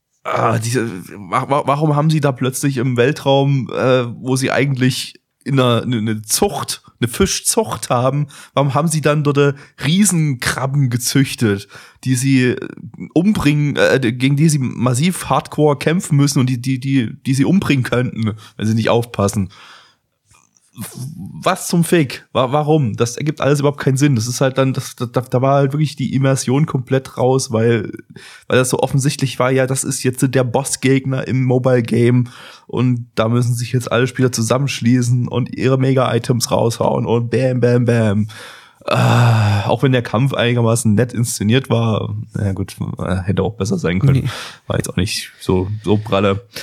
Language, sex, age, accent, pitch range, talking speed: German, male, 20-39, German, 115-140 Hz, 165 wpm